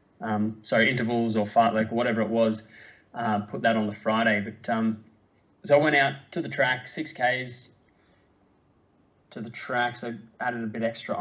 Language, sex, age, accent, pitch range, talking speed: English, male, 20-39, Australian, 110-120 Hz, 180 wpm